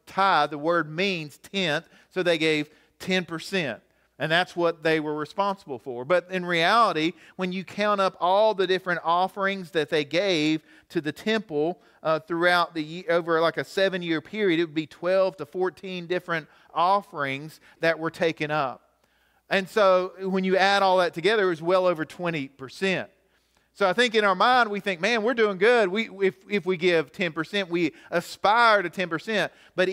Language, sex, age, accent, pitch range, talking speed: English, male, 40-59, American, 160-195 Hz, 180 wpm